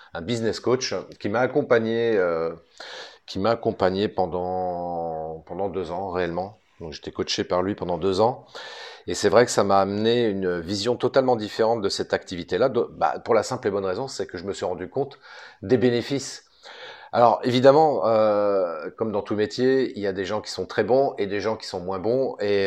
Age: 40-59